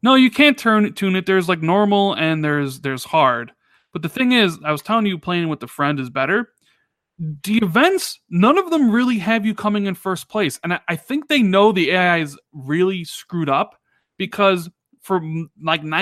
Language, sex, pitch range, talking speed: English, male, 145-205 Hz, 205 wpm